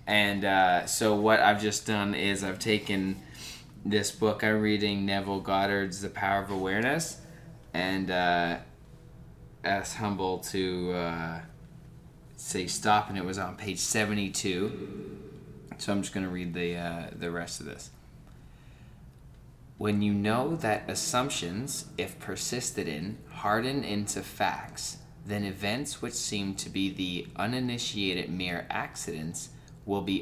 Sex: male